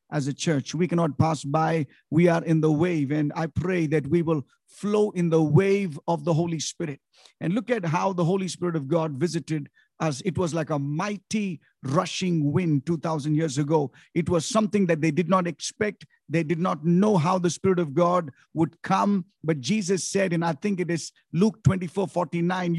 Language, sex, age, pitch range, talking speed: English, male, 50-69, 160-195 Hz, 200 wpm